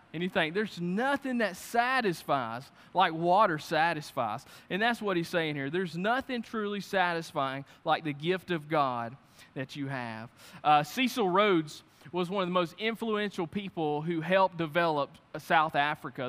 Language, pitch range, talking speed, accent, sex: English, 155-195 Hz, 160 wpm, American, male